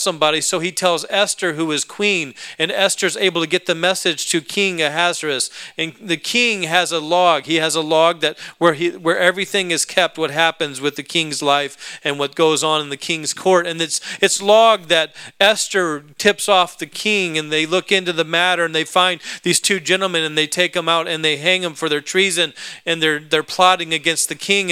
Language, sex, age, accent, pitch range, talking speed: English, male, 40-59, American, 160-190 Hz, 220 wpm